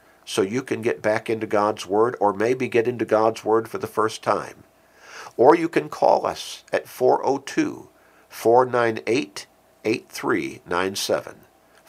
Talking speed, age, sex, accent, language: 125 wpm, 50-69, male, American, English